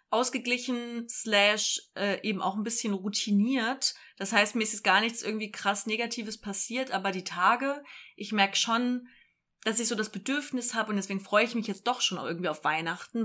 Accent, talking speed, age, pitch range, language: German, 190 wpm, 20-39, 190-240 Hz, German